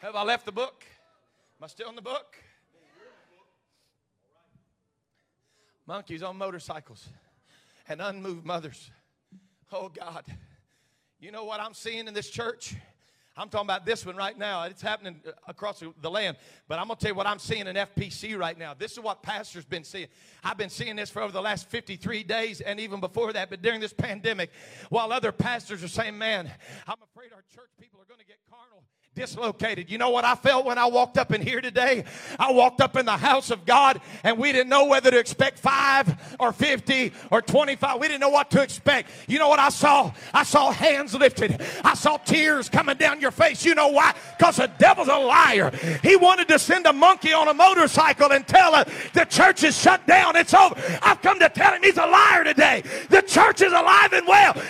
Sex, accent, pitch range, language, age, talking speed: male, American, 200-300 Hz, English, 40-59, 210 wpm